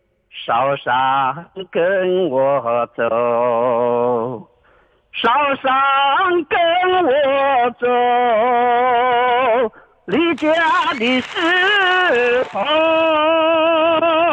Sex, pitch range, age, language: male, 220-320 Hz, 50-69, Chinese